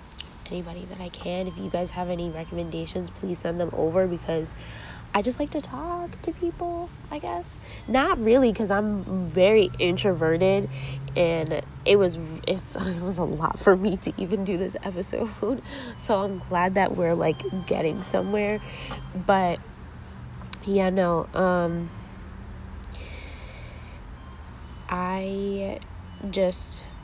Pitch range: 165-205 Hz